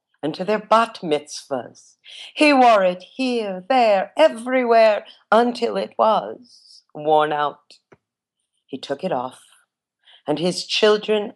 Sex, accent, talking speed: female, American, 120 wpm